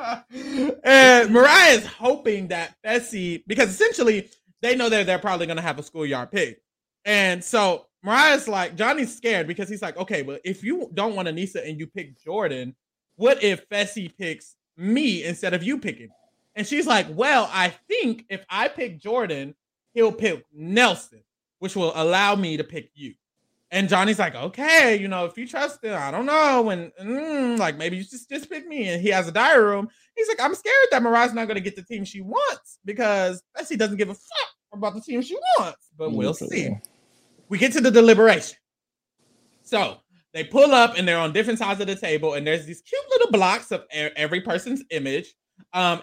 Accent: American